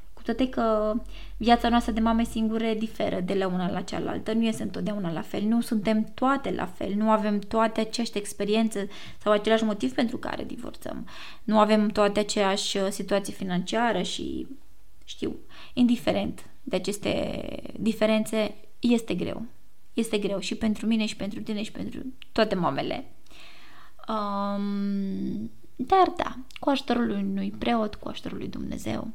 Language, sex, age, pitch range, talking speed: Romanian, female, 20-39, 205-245 Hz, 150 wpm